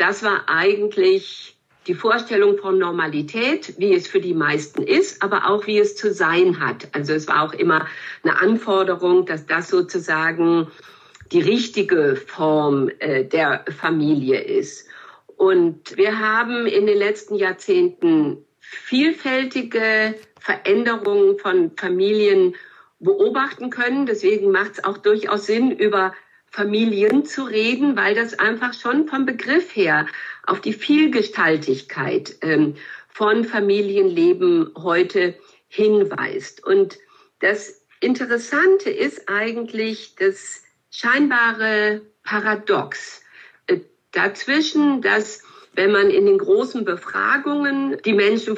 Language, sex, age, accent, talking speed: German, female, 50-69, German, 115 wpm